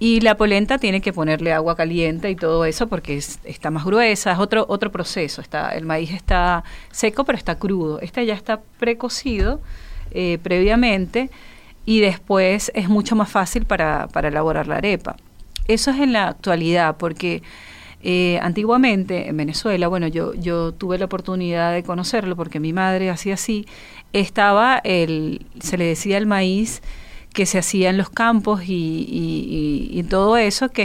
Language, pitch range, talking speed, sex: Spanish, 170-215 Hz, 170 wpm, female